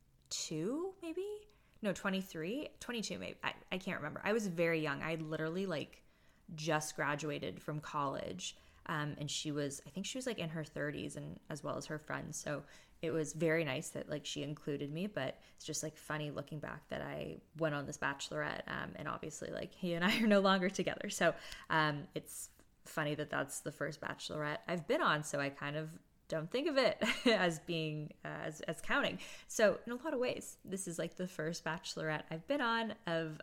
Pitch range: 150-180 Hz